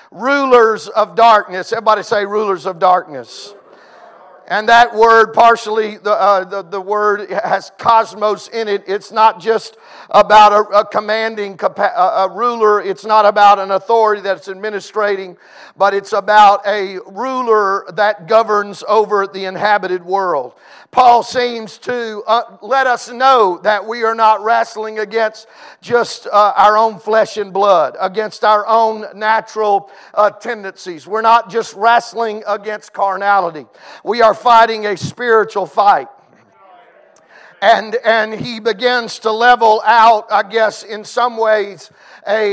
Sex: male